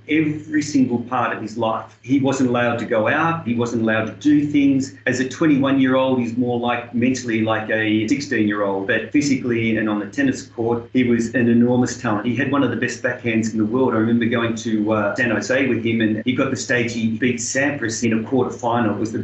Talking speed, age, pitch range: 245 wpm, 40-59, 115-140 Hz